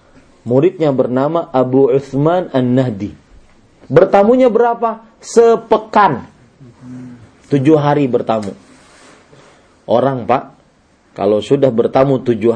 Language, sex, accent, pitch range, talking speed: English, male, Indonesian, 125-210 Hz, 80 wpm